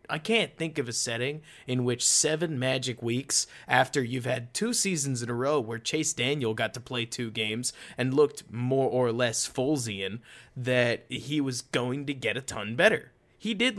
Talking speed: 190 wpm